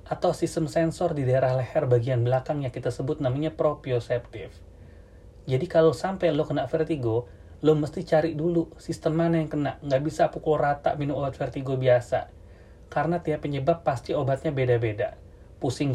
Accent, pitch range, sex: native, 120-160 Hz, male